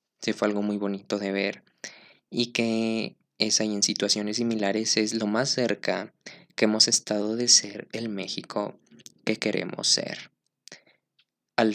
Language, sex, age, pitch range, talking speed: Spanish, male, 20-39, 100-110 Hz, 150 wpm